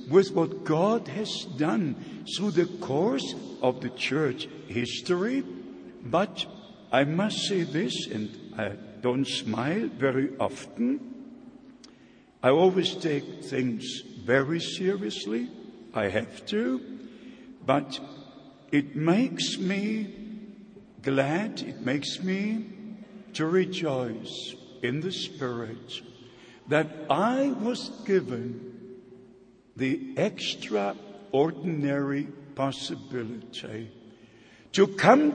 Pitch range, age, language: 130-215 Hz, 60-79, English